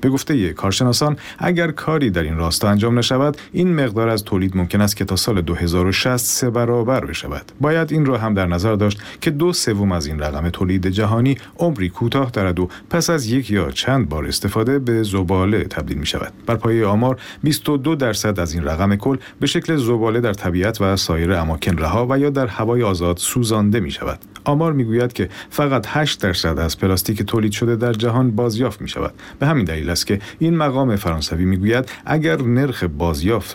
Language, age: Persian, 50-69